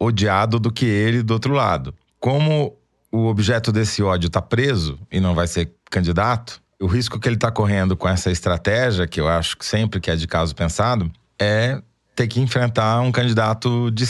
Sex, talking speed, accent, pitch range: male, 190 wpm, Brazilian, 95-130 Hz